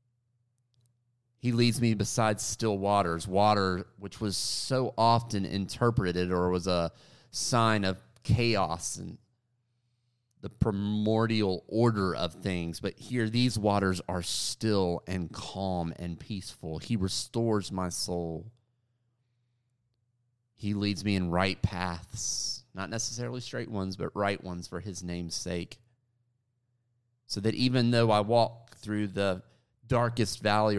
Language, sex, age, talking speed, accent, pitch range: English, male, 30-49, 125 wpm, American, 95-120 Hz